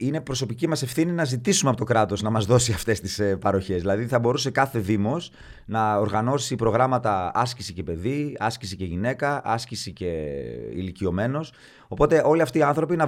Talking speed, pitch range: 175 wpm, 110-140 Hz